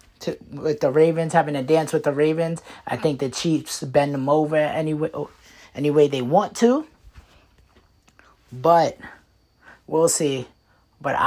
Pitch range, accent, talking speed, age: 125-165 Hz, American, 140 wpm, 30-49